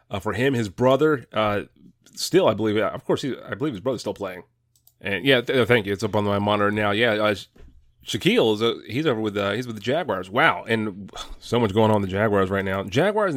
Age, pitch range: 30-49, 100-120 Hz